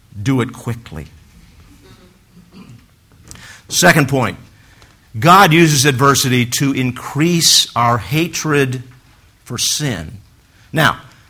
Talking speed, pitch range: 80 wpm, 105-145 Hz